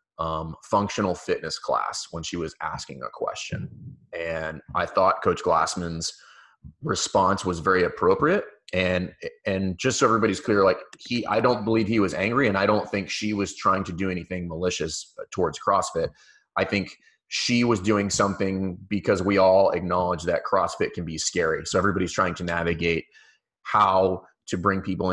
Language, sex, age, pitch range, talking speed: English, male, 30-49, 90-105 Hz, 165 wpm